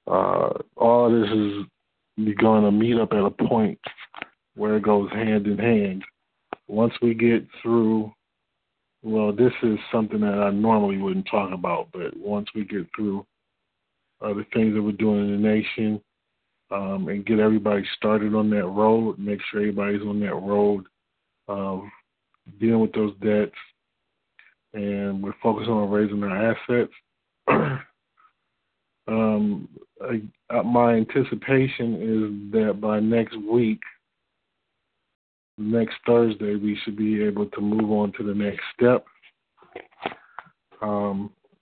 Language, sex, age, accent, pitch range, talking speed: English, male, 20-39, American, 105-115 Hz, 140 wpm